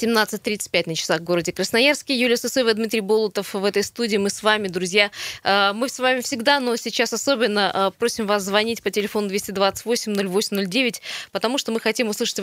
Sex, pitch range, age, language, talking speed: female, 195-235 Hz, 20-39, Russian, 170 wpm